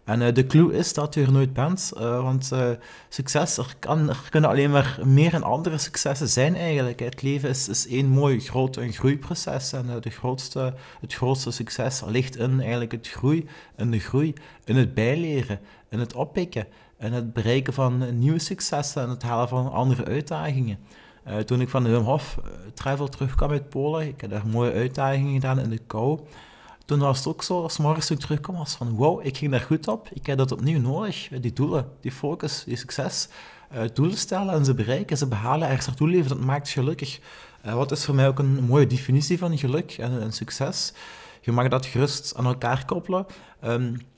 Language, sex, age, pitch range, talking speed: Dutch, male, 30-49, 120-150 Hz, 200 wpm